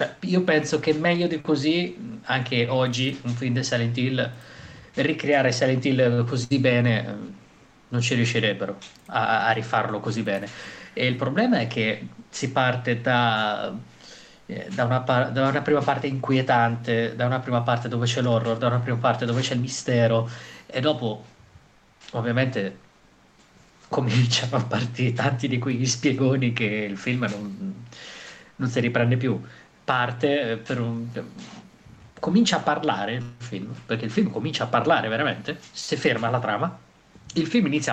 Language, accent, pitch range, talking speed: Italian, native, 120-150 Hz, 155 wpm